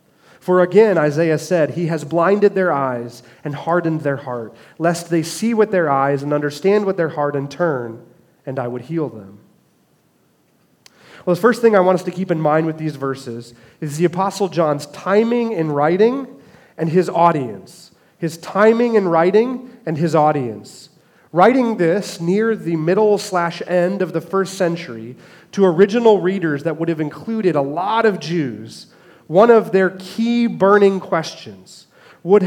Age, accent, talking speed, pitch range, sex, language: 30-49, American, 170 wpm, 150-195 Hz, male, English